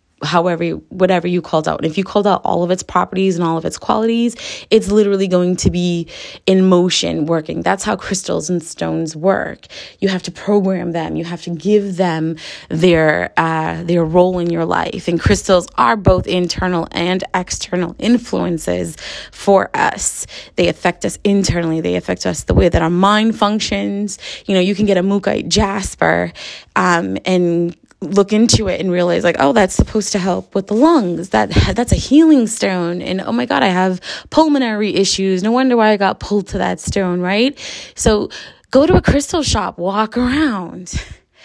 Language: English